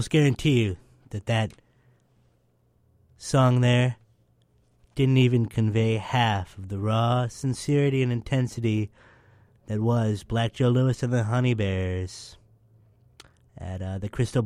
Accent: American